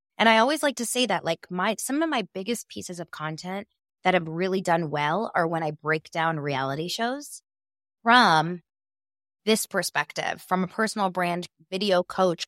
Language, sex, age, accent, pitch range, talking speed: English, female, 20-39, American, 150-210 Hz, 180 wpm